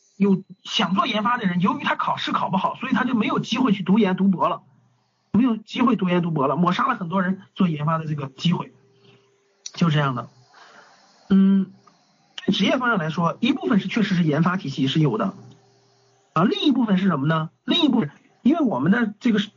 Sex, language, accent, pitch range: male, Chinese, native, 175-235 Hz